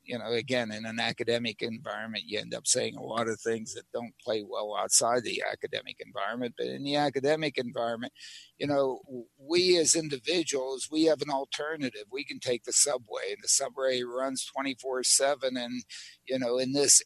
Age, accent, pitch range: 60-79, American, 125-155 Hz